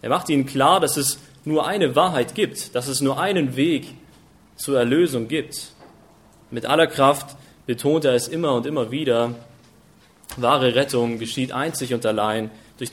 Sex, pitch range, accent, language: male, 120-150 Hz, German, German